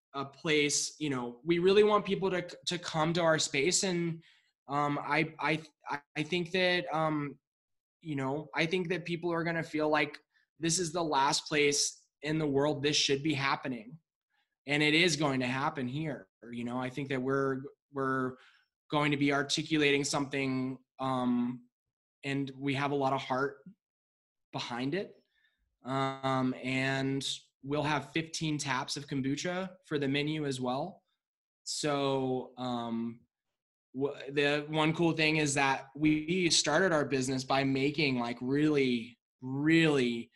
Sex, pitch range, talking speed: male, 130-155 Hz, 155 wpm